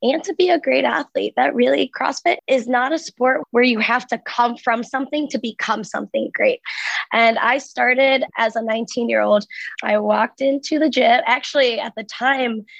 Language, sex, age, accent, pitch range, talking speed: English, female, 20-39, American, 225-270 Hz, 190 wpm